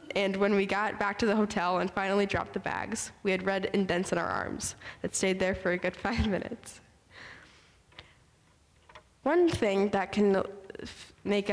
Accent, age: American, 10-29